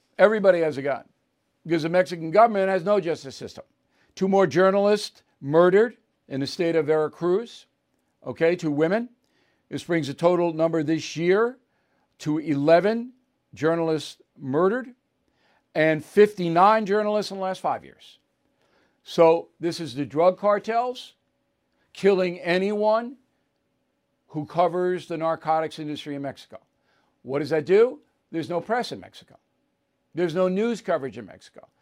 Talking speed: 140 wpm